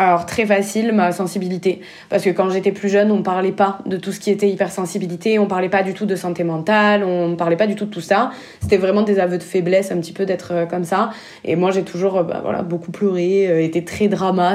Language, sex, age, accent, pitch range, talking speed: French, female, 20-39, French, 180-205 Hz, 250 wpm